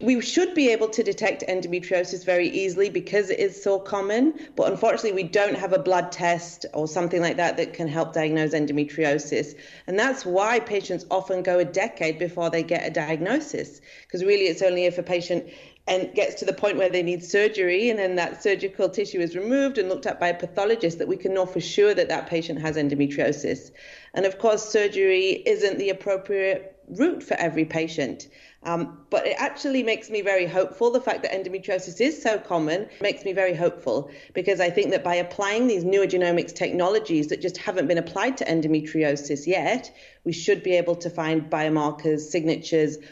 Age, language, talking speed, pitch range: 30-49, English, 195 wpm, 160-205 Hz